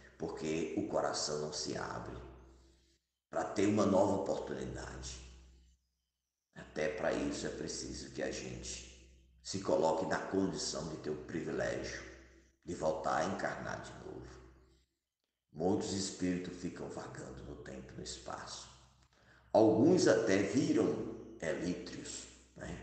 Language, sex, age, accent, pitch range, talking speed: Portuguese, male, 50-69, Brazilian, 65-95 Hz, 125 wpm